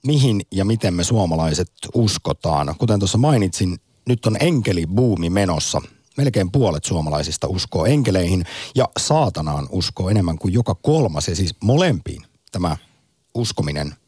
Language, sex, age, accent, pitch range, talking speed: Finnish, male, 50-69, native, 90-125 Hz, 130 wpm